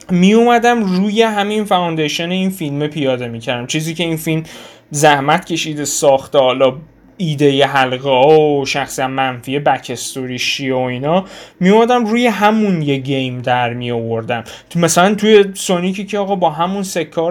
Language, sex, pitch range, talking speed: Persian, male, 140-190 Hz, 165 wpm